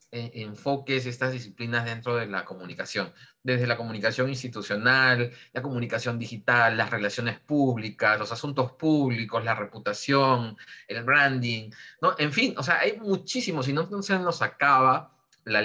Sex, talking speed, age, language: male, 145 wpm, 30-49, Spanish